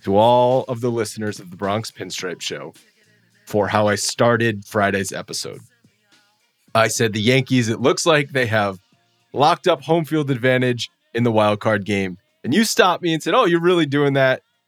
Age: 30-49